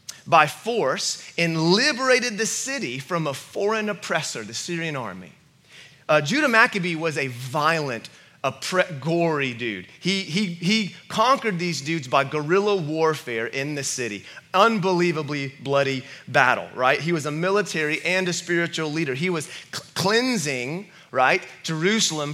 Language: English